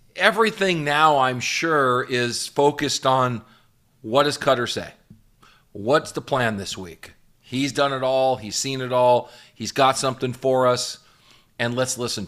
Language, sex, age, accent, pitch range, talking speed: English, male, 40-59, American, 125-165 Hz, 155 wpm